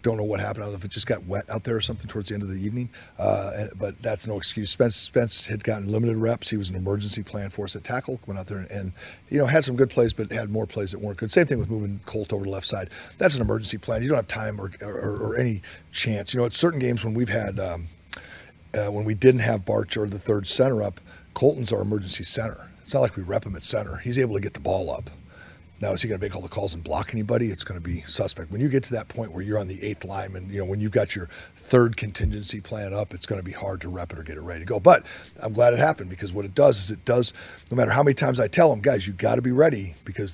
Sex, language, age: male, English, 40-59